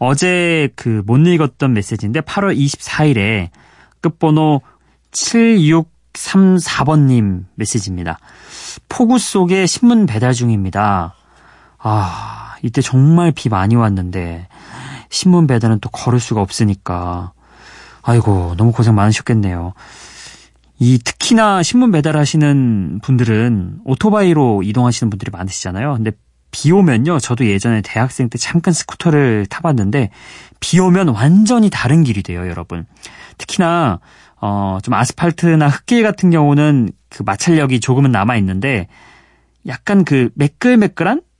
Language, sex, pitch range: Korean, male, 105-165 Hz